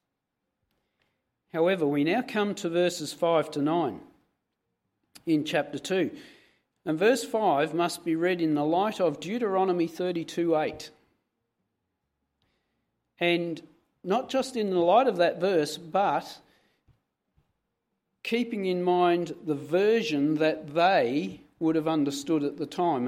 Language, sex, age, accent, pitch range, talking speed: English, male, 50-69, Australian, 150-190 Hz, 125 wpm